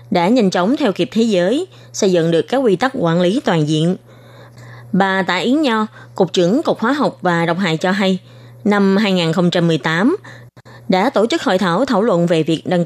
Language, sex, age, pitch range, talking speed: Vietnamese, female, 20-39, 165-235 Hz, 200 wpm